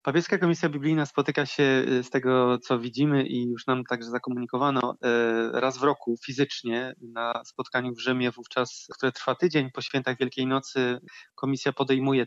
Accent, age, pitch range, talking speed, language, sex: native, 20-39, 125-140 Hz, 155 wpm, Polish, male